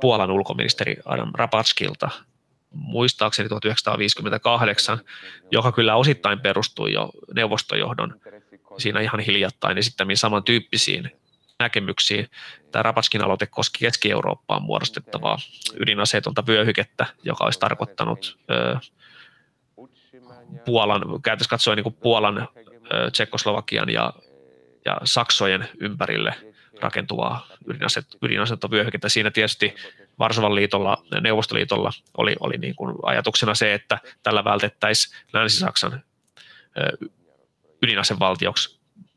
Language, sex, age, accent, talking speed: Finnish, male, 20-39, native, 85 wpm